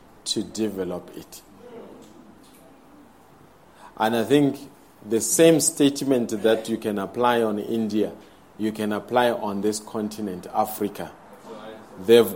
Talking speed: 110 wpm